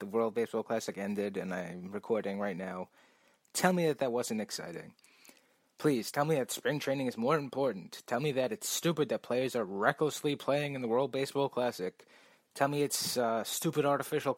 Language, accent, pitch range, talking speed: English, American, 110-140 Hz, 190 wpm